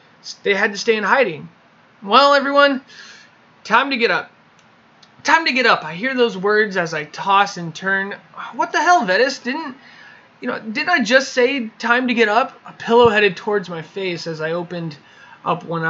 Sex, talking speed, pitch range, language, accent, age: male, 195 wpm, 165-215 Hz, English, American, 20-39